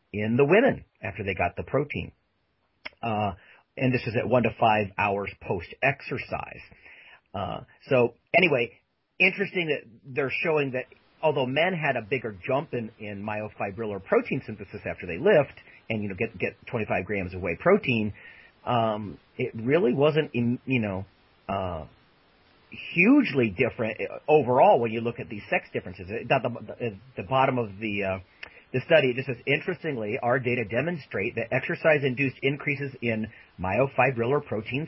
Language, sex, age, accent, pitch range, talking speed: English, male, 40-59, American, 110-145 Hz, 150 wpm